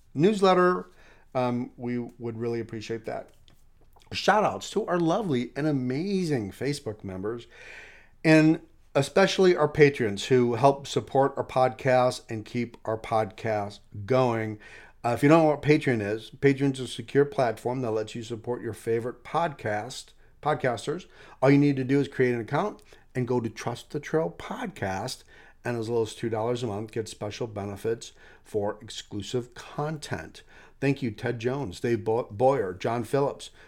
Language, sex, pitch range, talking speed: English, male, 115-145 Hz, 155 wpm